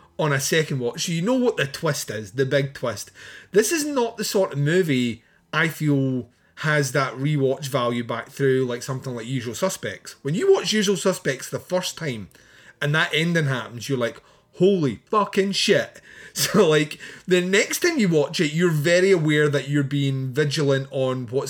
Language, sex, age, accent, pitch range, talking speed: English, male, 30-49, British, 135-185 Hz, 190 wpm